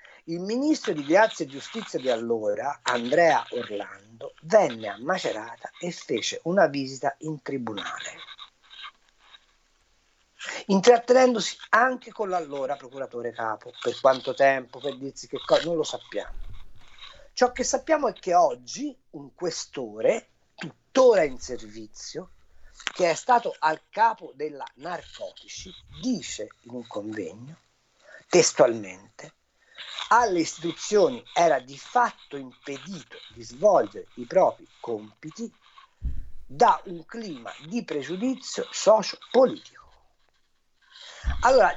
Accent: native